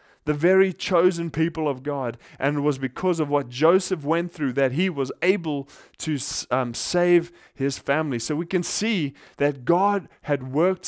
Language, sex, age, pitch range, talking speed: English, male, 20-39, 145-185 Hz, 175 wpm